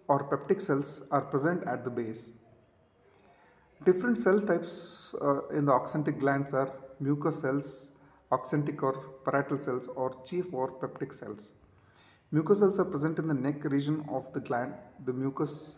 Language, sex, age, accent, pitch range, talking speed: English, male, 40-59, Indian, 130-155 Hz, 155 wpm